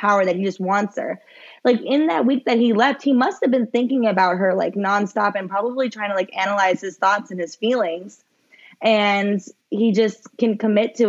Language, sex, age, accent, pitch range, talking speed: English, female, 20-39, American, 195-245 Hz, 210 wpm